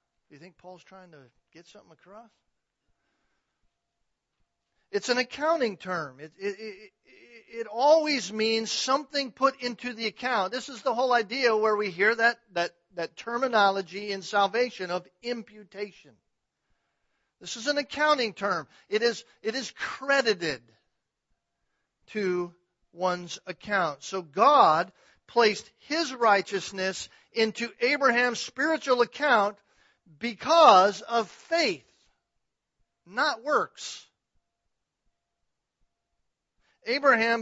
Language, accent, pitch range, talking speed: English, American, 185-260 Hz, 105 wpm